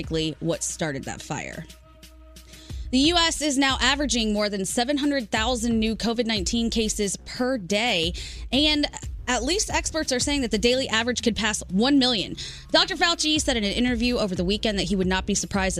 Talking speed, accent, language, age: 175 wpm, American, English, 20-39